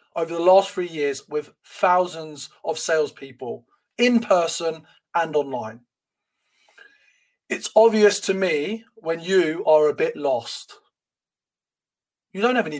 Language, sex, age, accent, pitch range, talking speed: English, male, 30-49, British, 150-215 Hz, 125 wpm